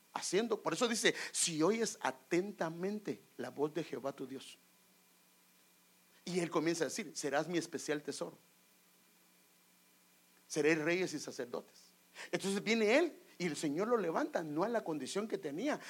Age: 50-69